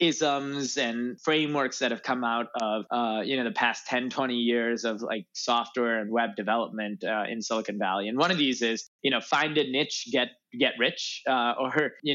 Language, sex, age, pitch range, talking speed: English, male, 20-39, 120-140 Hz, 205 wpm